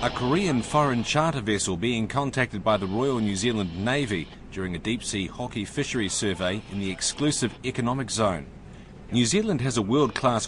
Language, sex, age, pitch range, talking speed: English, male, 30-49, 105-140 Hz, 170 wpm